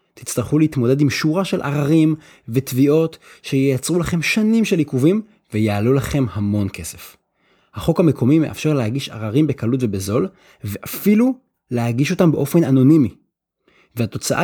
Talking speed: 120 wpm